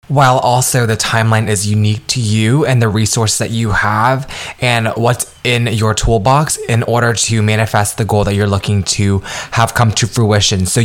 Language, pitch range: English, 105-125 Hz